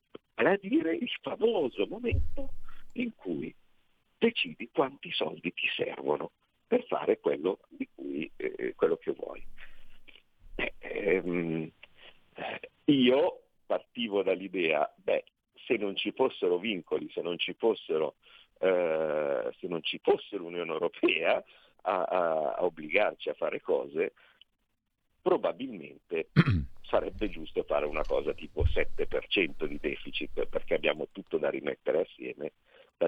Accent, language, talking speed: native, Italian, 120 wpm